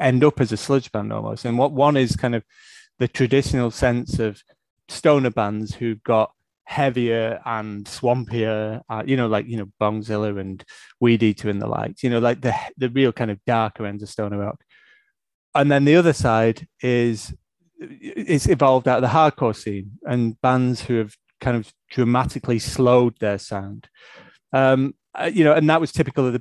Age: 30-49